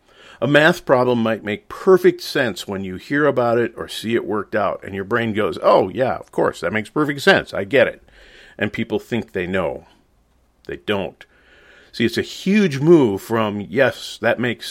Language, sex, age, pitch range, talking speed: English, male, 50-69, 105-135 Hz, 195 wpm